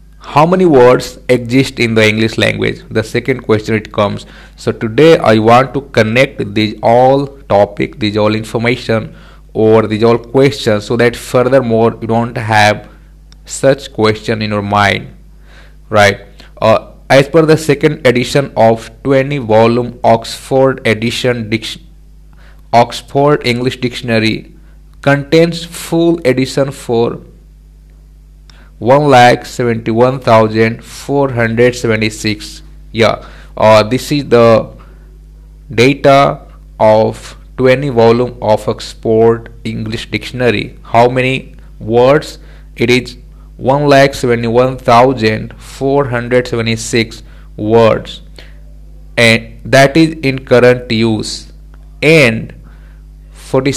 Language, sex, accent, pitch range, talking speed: English, male, Indian, 110-135 Hz, 115 wpm